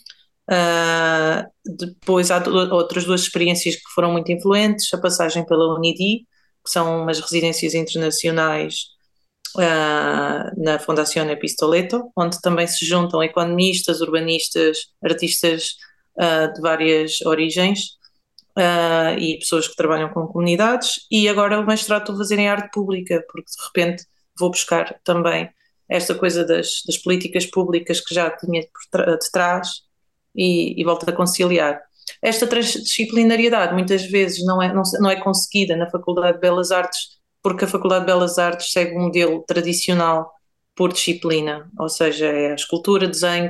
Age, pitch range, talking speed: 30-49, 165-185 Hz, 145 wpm